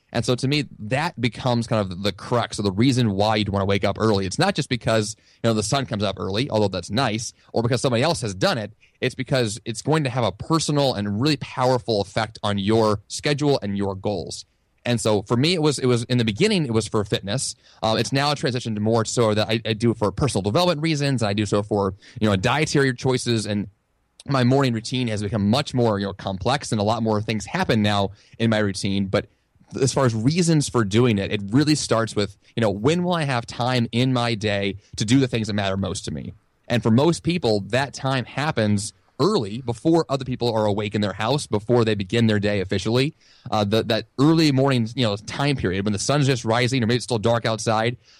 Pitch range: 105-135 Hz